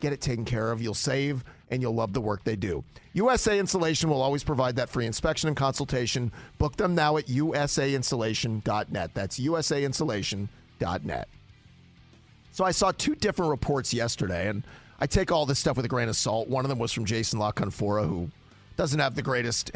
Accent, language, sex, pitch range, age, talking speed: American, English, male, 115-145 Hz, 40-59, 190 wpm